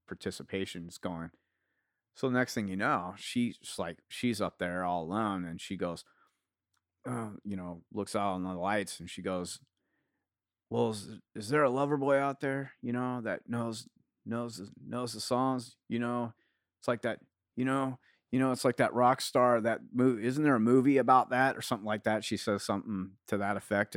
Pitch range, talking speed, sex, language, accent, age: 95-130 Hz, 200 wpm, male, English, American, 30-49